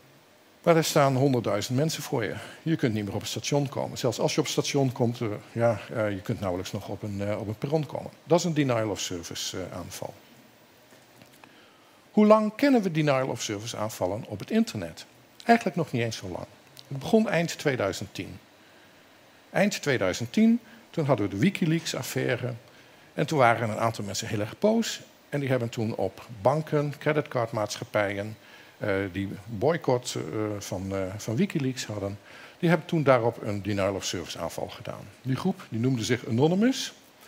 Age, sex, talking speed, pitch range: 50-69, male, 165 wpm, 110-160 Hz